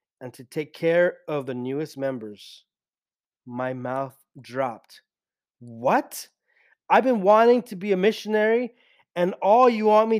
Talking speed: 140 wpm